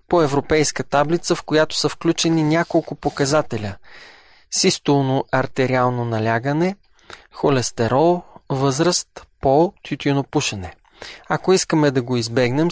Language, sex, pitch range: Bulgarian, male, 130-160 Hz